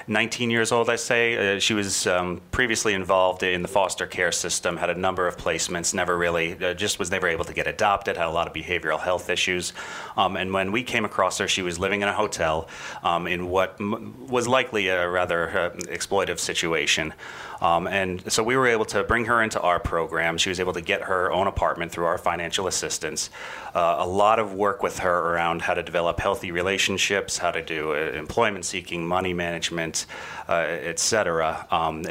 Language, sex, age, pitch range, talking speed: English, male, 30-49, 85-105 Hz, 205 wpm